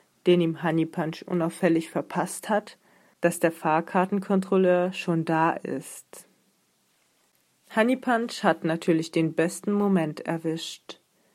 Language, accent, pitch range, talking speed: German, German, 165-195 Hz, 110 wpm